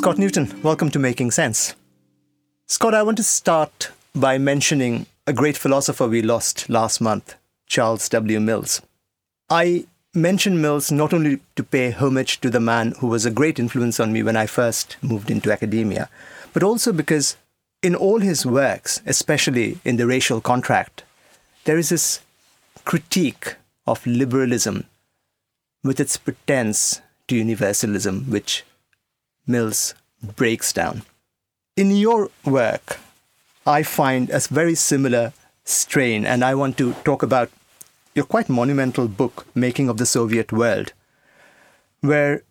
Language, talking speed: English, 140 wpm